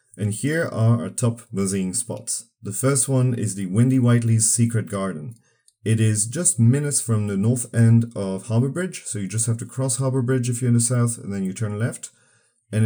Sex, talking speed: male, 215 wpm